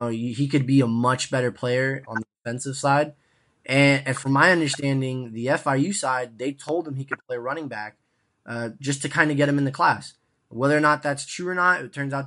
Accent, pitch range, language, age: American, 125-150 Hz, English, 20-39